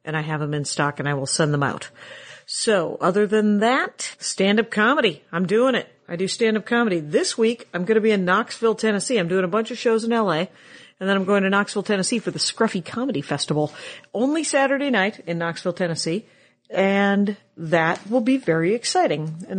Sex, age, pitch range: female, 50-69, 170-225 Hz